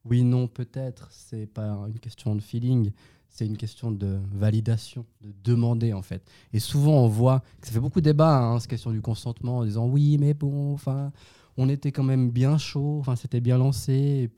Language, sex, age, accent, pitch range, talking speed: French, male, 20-39, French, 105-130 Hz, 205 wpm